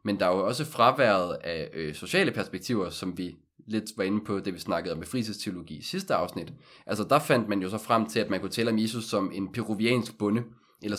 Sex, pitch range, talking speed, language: male, 105-130 Hz, 240 wpm, Danish